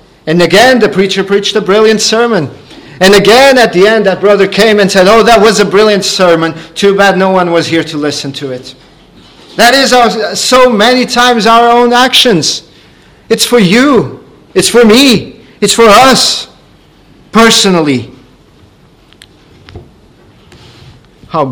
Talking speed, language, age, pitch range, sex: 150 wpm, English, 40-59, 170-205 Hz, male